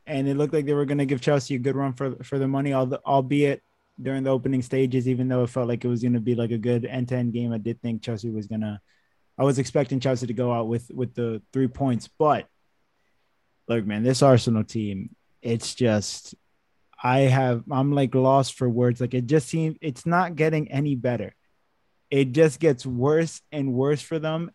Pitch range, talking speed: 115-140 Hz, 225 wpm